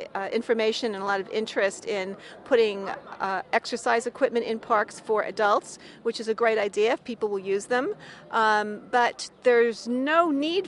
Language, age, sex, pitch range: English, 40-59, female, 205-245 Hz